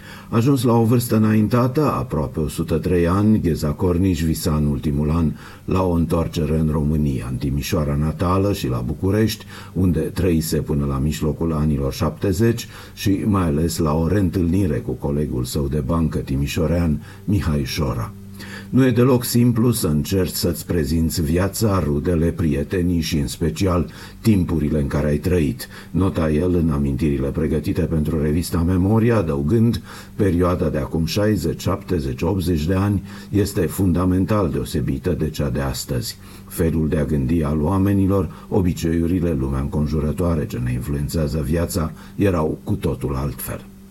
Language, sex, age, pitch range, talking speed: Romanian, male, 50-69, 75-100 Hz, 145 wpm